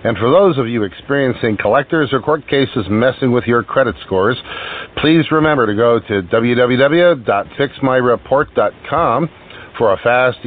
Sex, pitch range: male, 105-145 Hz